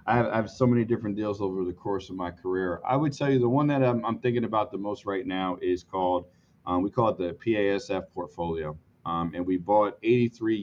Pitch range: 90-110 Hz